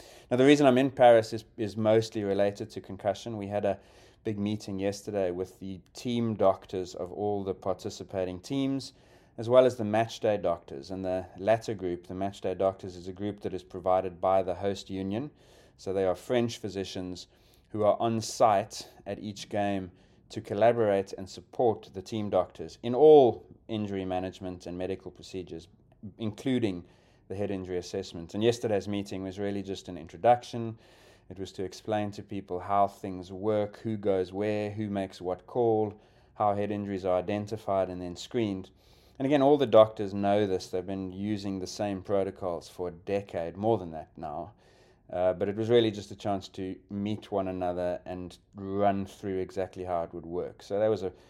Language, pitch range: English, 95-110 Hz